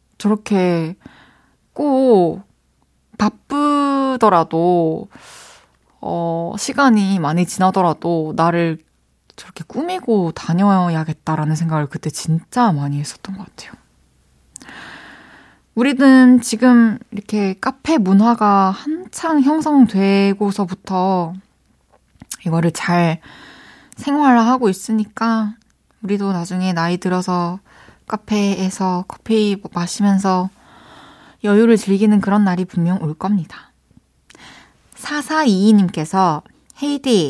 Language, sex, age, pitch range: Korean, female, 20-39, 170-235 Hz